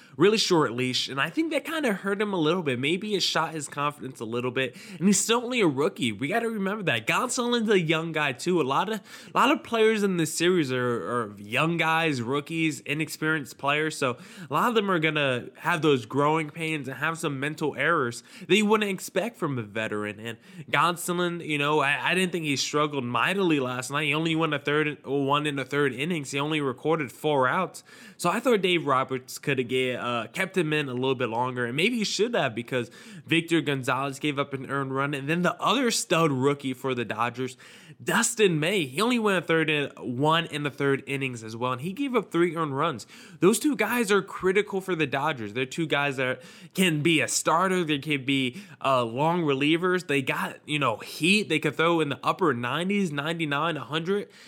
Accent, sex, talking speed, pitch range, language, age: American, male, 220 wpm, 135-185 Hz, English, 10-29